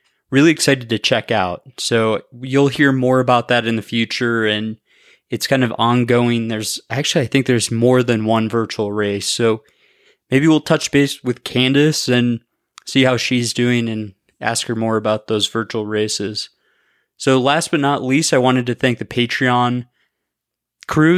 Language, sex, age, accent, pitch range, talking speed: English, male, 20-39, American, 110-130 Hz, 175 wpm